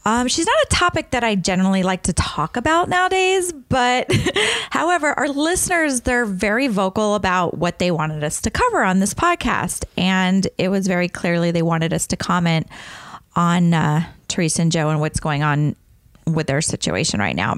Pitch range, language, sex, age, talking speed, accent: 165-220 Hz, English, female, 30-49, 185 wpm, American